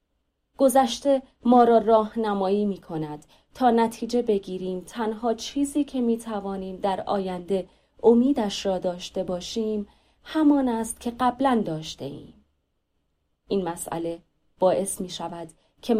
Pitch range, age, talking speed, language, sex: 180-230 Hz, 30-49, 125 wpm, Persian, female